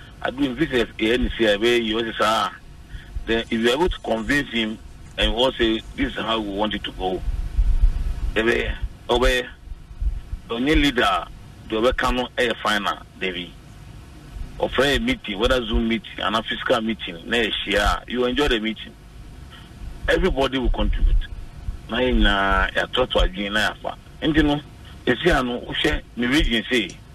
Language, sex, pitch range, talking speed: English, male, 100-125 Hz, 165 wpm